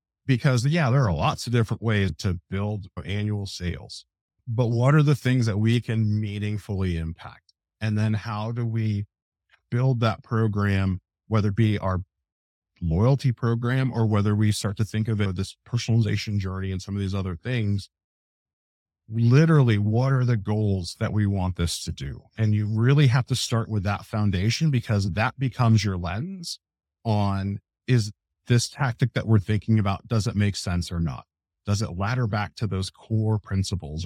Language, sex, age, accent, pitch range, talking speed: English, male, 50-69, American, 95-120 Hz, 175 wpm